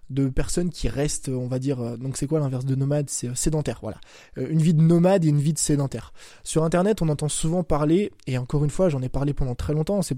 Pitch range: 135-165 Hz